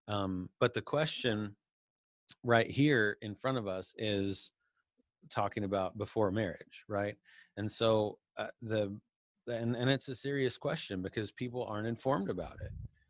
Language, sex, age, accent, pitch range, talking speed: English, male, 30-49, American, 100-120 Hz, 145 wpm